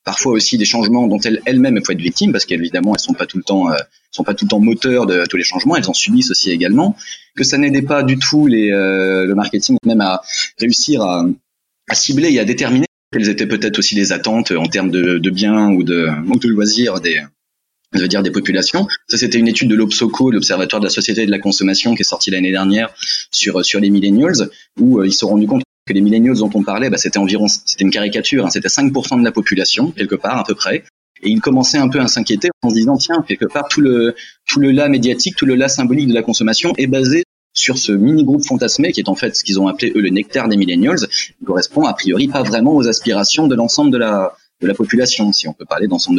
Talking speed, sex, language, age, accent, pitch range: 240 wpm, male, French, 30-49, French, 100-130 Hz